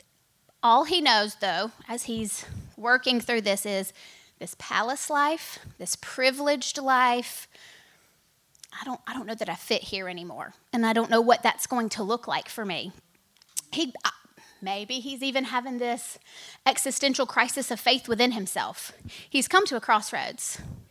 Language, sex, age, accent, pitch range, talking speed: English, female, 30-49, American, 220-270 Hz, 160 wpm